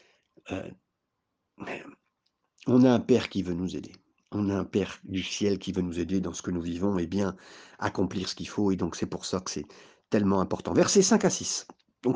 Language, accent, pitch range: French, French, 110-175 Hz